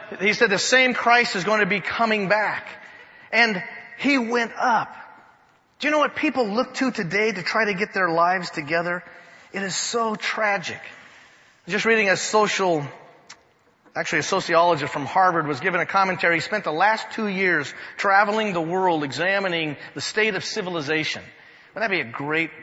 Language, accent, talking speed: English, American, 175 wpm